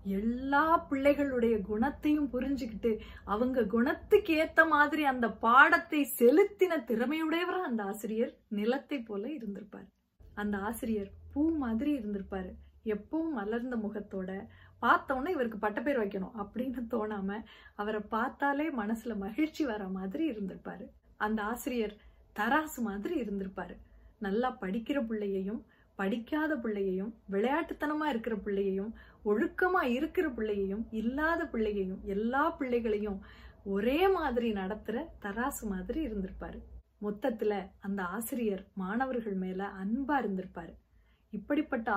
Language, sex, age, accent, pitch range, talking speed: Tamil, female, 30-49, native, 205-275 Hz, 105 wpm